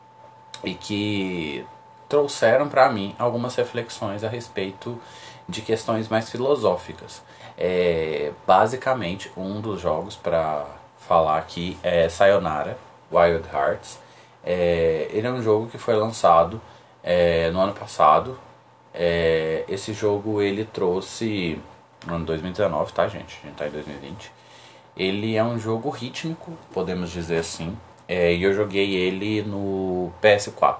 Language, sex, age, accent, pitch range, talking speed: Portuguese, male, 20-39, Brazilian, 85-115 Hz, 130 wpm